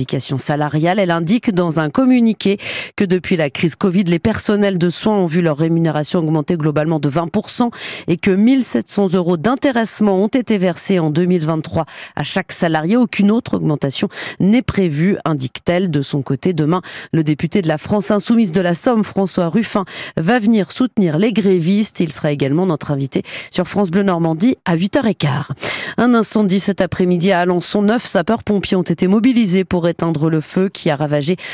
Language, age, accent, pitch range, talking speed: French, 40-59, French, 165-210 Hz, 175 wpm